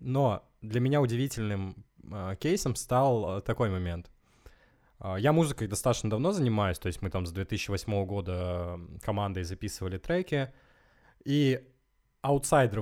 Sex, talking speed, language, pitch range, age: male, 130 wpm, Russian, 105-155 Hz, 20-39